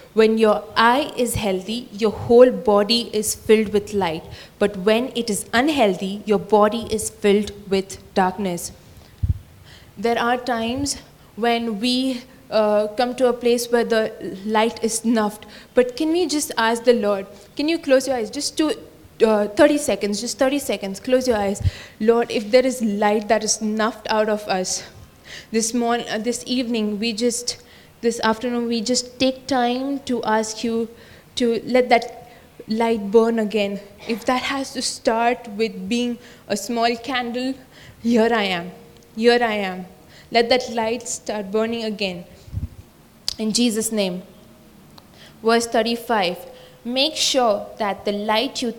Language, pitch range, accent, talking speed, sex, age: English, 210-245 Hz, Indian, 155 wpm, female, 20-39